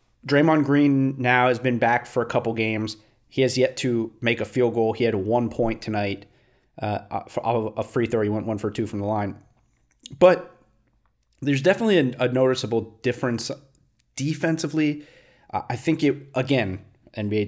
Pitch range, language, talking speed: 110-135 Hz, English, 170 wpm